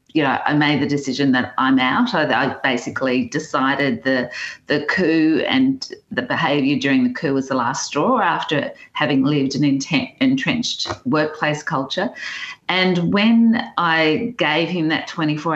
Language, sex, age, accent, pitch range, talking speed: English, female, 40-59, Australian, 140-180 Hz, 145 wpm